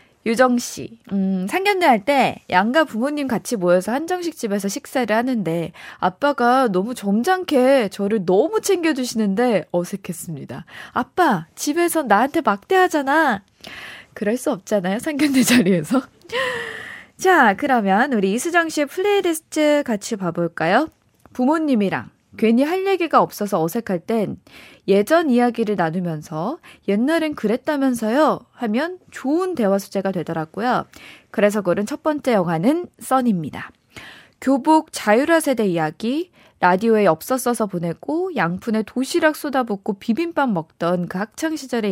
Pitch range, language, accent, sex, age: 200-295 Hz, Korean, native, female, 20-39